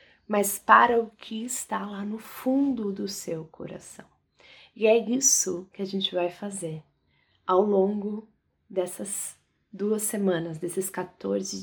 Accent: Brazilian